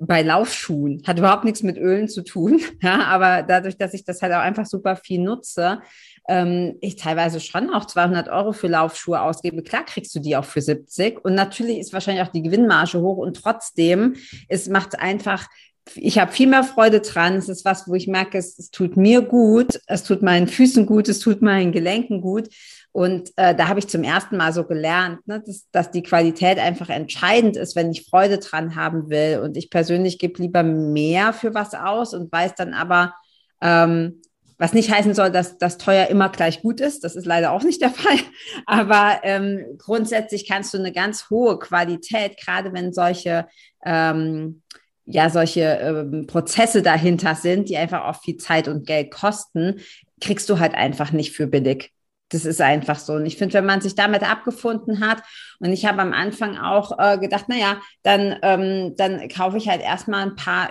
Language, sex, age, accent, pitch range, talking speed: German, female, 40-59, German, 170-205 Hz, 195 wpm